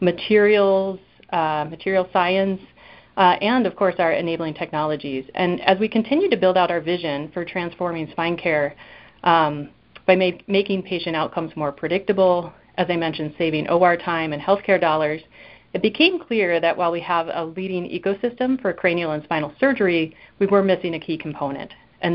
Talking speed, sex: 170 wpm, female